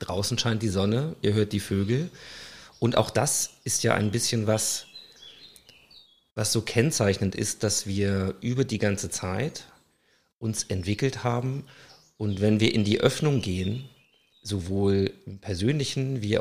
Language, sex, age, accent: German, male, 40-59, German